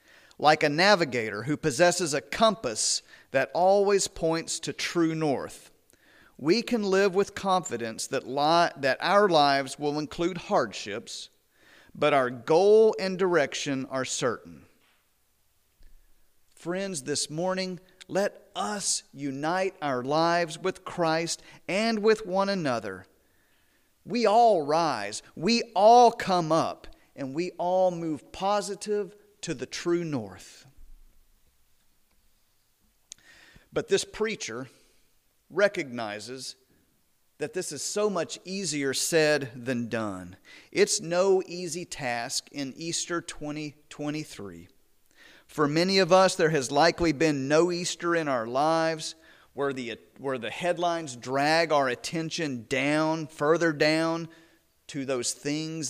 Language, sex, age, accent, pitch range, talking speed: English, male, 40-59, American, 135-185 Hz, 115 wpm